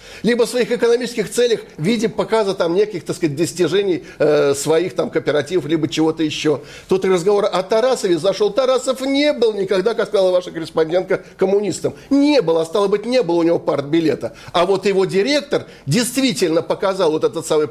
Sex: male